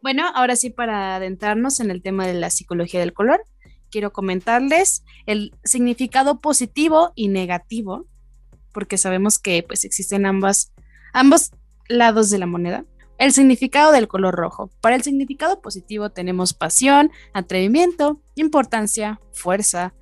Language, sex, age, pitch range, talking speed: Spanish, female, 20-39, 190-250 Hz, 135 wpm